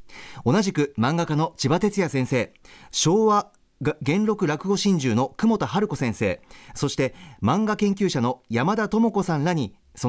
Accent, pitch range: native, 130-205 Hz